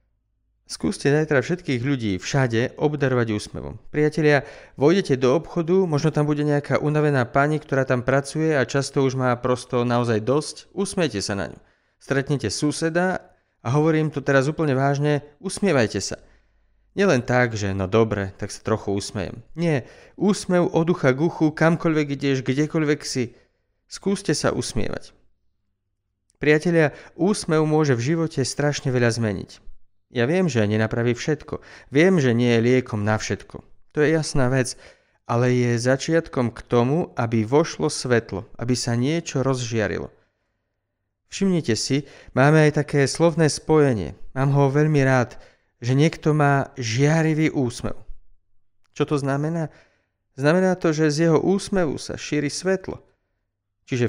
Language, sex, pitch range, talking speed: Slovak, male, 115-155 Hz, 140 wpm